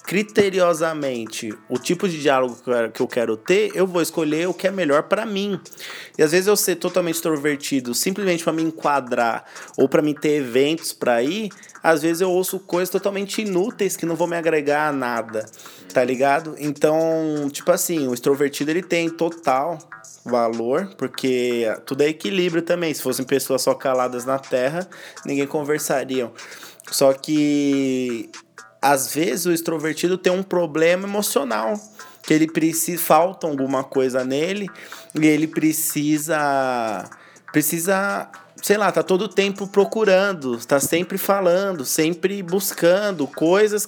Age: 20-39